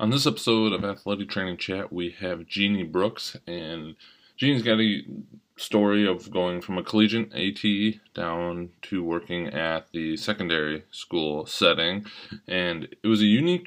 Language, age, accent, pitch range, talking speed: English, 20-39, American, 80-105 Hz, 155 wpm